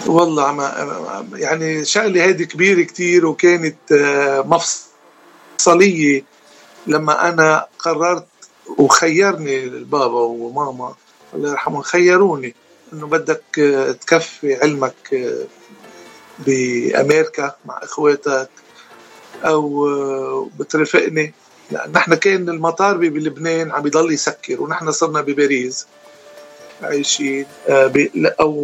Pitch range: 145-205 Hz